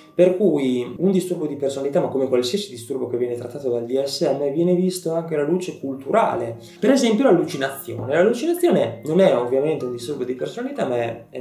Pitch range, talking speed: 120-165 Hz, 180 wpm